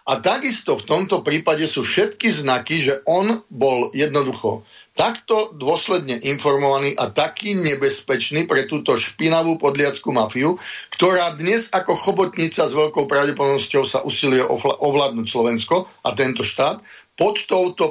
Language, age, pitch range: Slovak, 40-59, 130-170 Hz